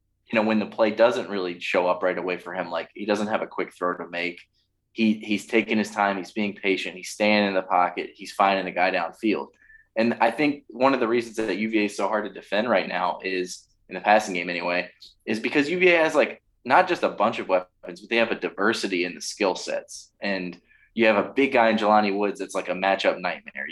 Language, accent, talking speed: English, American, 245 wpm